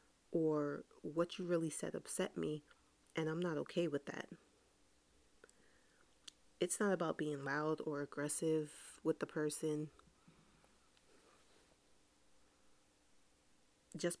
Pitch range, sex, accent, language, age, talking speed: 155-175 Hz, female, American, English, 30-49, 100 wpm